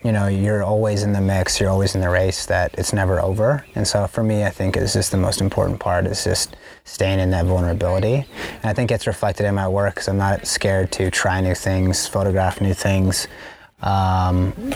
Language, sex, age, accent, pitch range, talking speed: English, male, 20-39, American, 95-100 Hz, 220 wpm